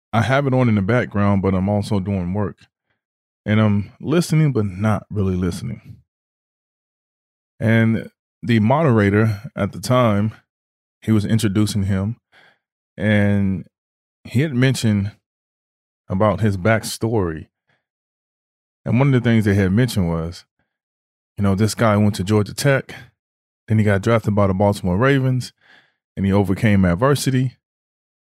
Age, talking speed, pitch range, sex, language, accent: 20-39, 140 wpm, 95-115 Hz, male, English, American